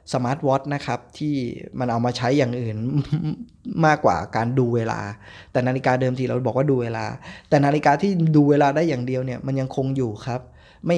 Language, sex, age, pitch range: Thai, male, 20-39, 110-140 Hz